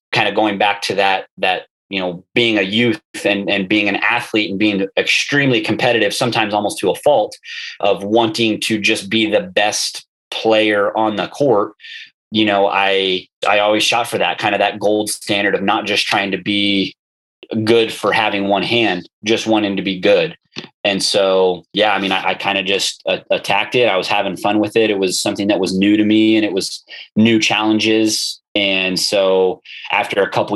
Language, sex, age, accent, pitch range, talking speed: English, male, 20-39, American, 95-110 Hz, 200 wpm